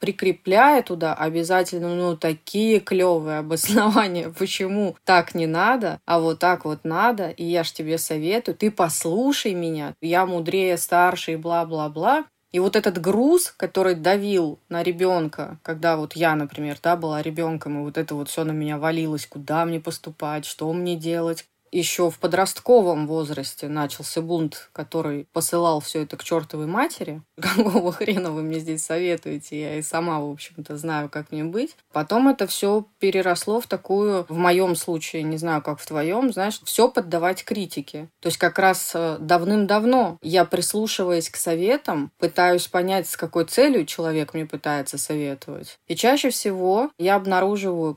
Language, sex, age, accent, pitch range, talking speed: Russian, female, 20-39, native, 160-190 Hz, 160 wpm